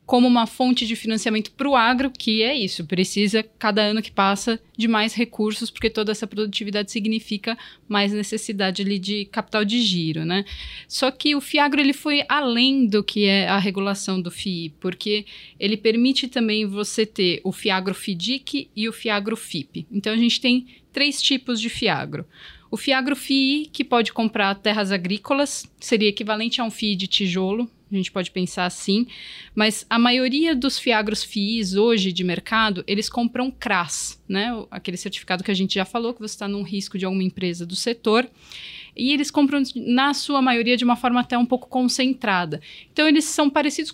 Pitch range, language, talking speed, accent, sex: 200-245 Hz, Portuguese, 185 wpm, Brazilian, female